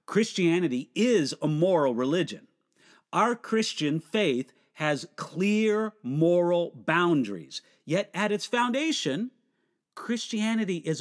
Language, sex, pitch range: English, male, 170-220 Hz